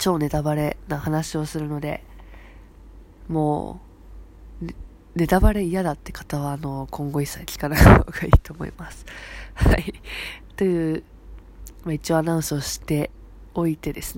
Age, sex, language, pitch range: 20-39, female, Japanese, 145-180 Hz